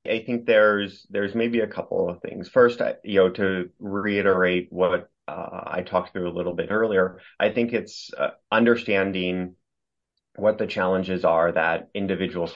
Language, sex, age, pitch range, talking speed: English, male, 30-49, 85-95 Hz, 165 wpm